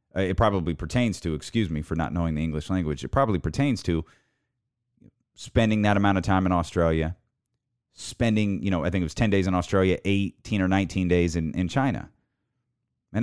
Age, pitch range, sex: 30-49, 100-145 Hz, male